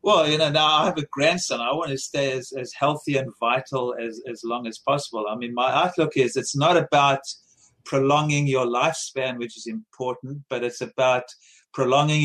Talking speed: 195 wpm